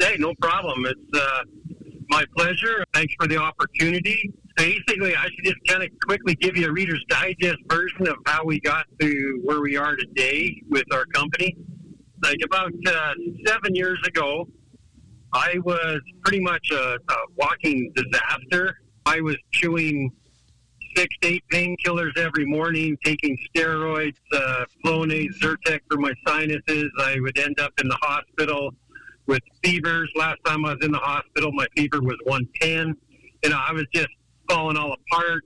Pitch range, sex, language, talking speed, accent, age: 145-175 Hz, male, English, 155 wpm, American, 50-69